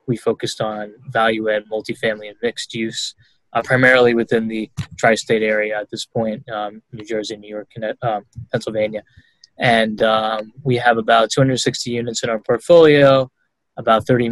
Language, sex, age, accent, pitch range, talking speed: English, male, 10-29, American, 110-130 Hz, 155 wpm